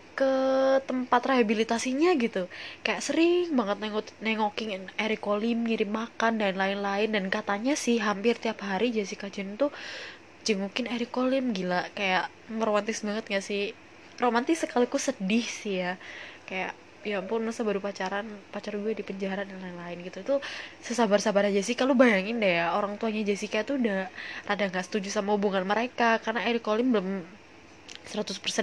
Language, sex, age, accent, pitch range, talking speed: Indonesian, female, 20-39, native, 205-255 Hz, 155 wpm